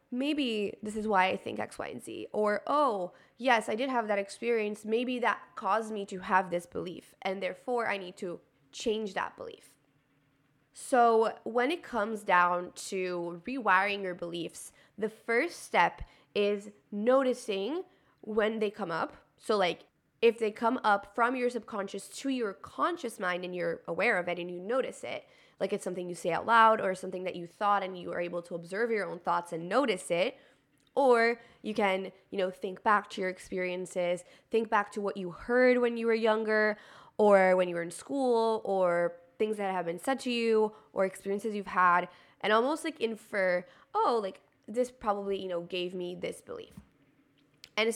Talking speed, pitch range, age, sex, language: 190 wpm, 180-230 Hz, 20-39, female, English